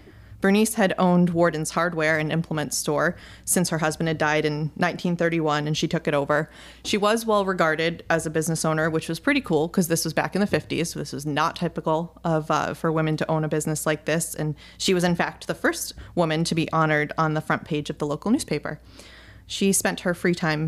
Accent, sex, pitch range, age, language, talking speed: American, female, 155-195 Hz, 20-39, English, 225 wpm